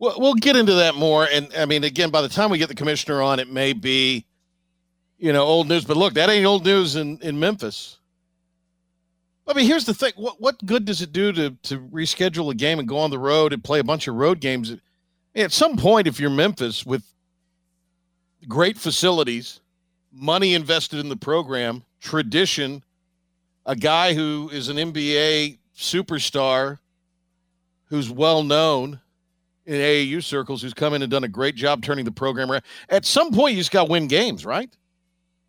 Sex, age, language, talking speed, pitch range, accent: male, 50-69, English, 185 wpm, 145-180 Hz, American